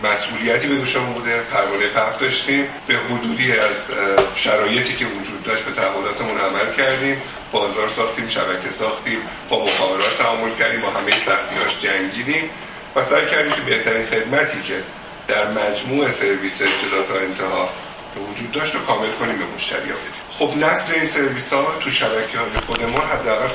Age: 50-69